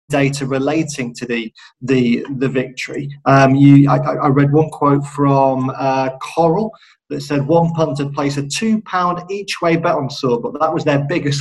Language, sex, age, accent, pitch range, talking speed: English, male, 30-49, British, 135-165 Hz, 185 wpm